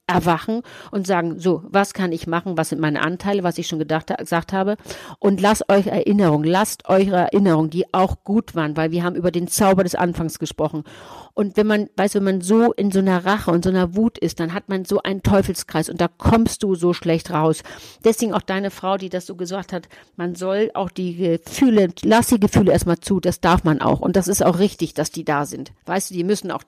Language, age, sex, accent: German, 50-69, female, German